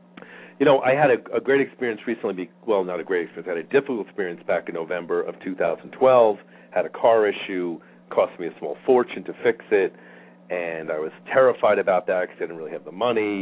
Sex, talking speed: male, 220 wpm